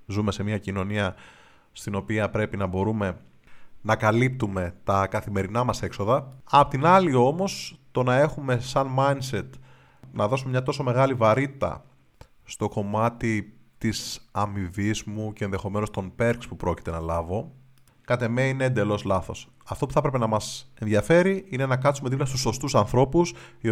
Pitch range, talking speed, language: 105-135 Hz, 160 wpm, Greek